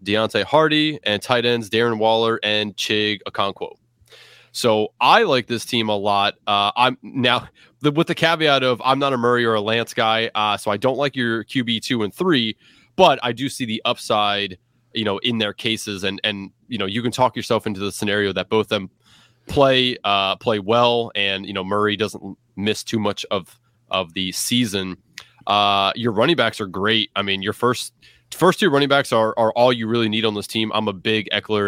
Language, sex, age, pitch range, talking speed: English, male, 20-39, 100-120 Hz, 210 wpm